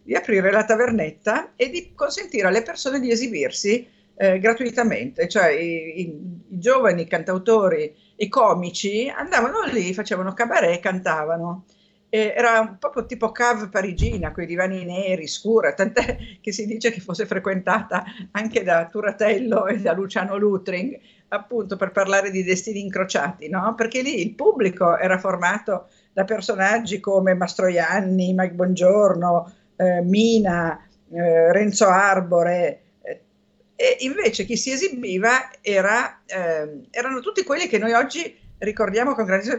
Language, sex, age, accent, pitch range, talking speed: Italian, female, 50-69, native, 185-235 Hz, 140 wpm